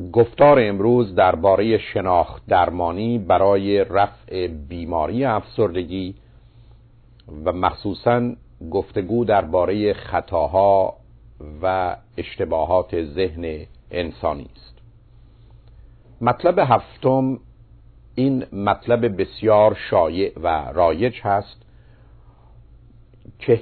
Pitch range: 95-120 Hz